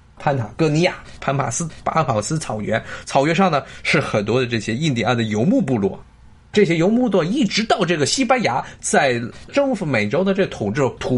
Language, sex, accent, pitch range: Chinese, male, native, 110-165 Hz